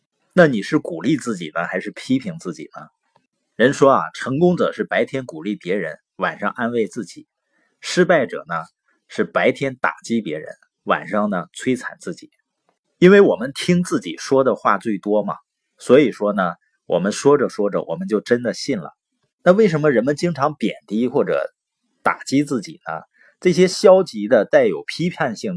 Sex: male